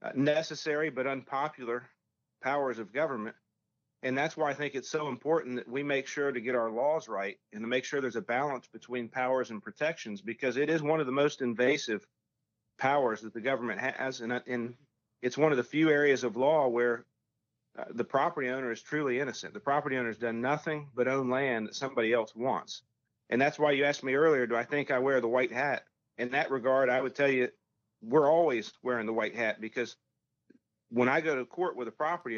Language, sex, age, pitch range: English, male, 40-59, 120-140 Hz